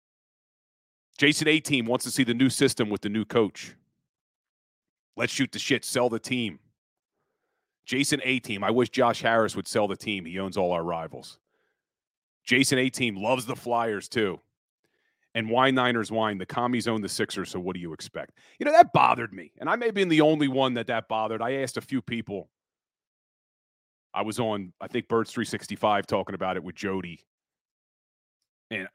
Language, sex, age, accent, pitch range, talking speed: English, male, 40-59, American, 110-150 Hz, 180 wpm